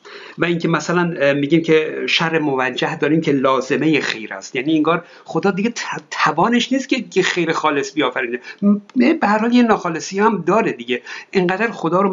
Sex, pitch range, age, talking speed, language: male, 160-205 Hz, 50-69, 160 wpm, Persian